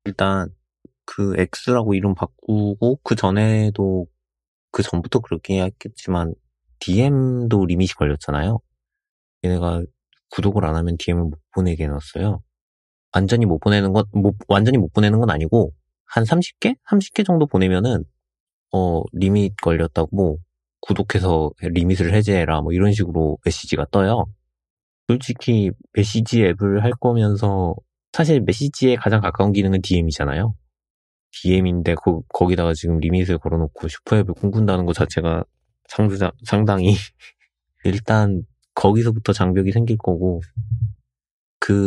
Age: 30-49